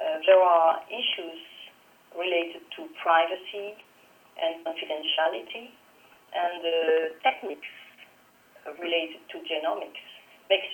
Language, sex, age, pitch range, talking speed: English, female, 40-59, 160-210 Hz, 90 wpm